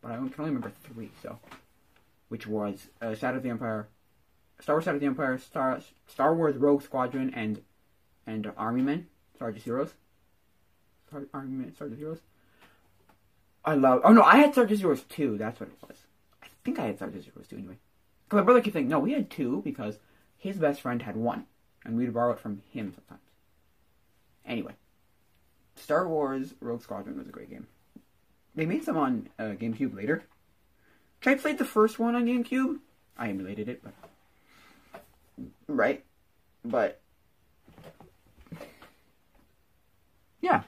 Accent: American